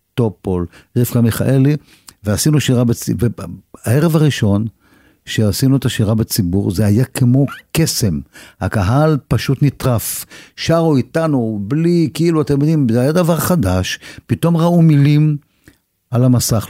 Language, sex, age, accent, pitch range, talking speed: Hebrew, male, 50-69, native, 100-130 Hz, 120 wpm